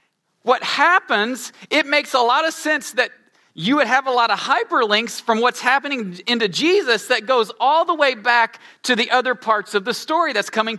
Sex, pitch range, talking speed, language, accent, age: male, 195-280 Hz, 200 wpm, English, American, 40-59